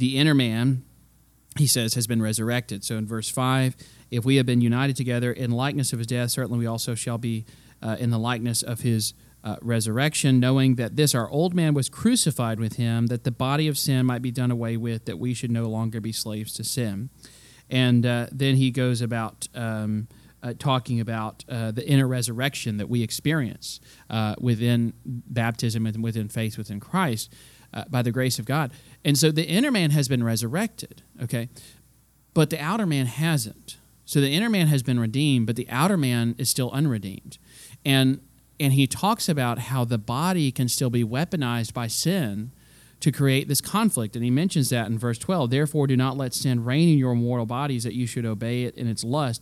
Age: 30-49